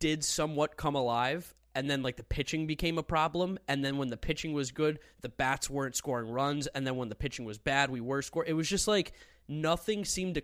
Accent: American